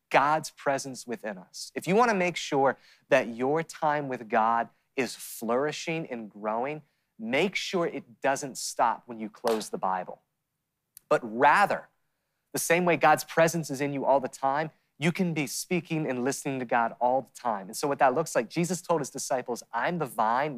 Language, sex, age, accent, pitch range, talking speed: English, male, 30-49, American, 115-155 Hz, 190 wpm